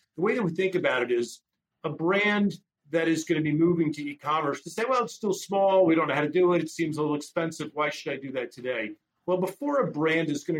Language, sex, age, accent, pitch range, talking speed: English, male, 40-59, American, 125-165 Hz, 270 wpm